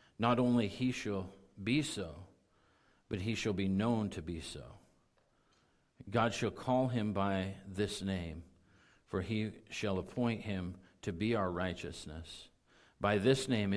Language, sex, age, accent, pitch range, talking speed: English, male, 50-69, American, 90-110 Hz, 145 wpm